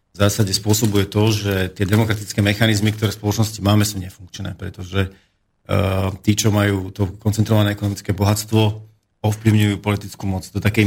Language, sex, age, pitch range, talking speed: Slovak, male, 40-59, 100-110 Hz, 155 wpm